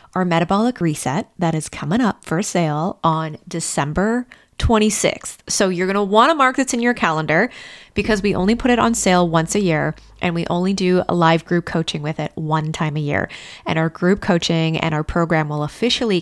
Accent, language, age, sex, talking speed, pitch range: American, English, 20-39, female, 205 wpm, 160-195 Hz